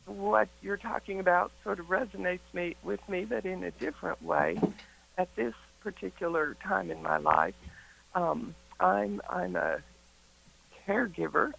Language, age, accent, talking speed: English, 60-79, American, 140 wpm